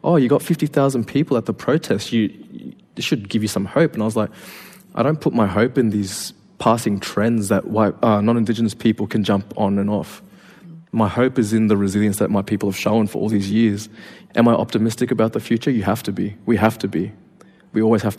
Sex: male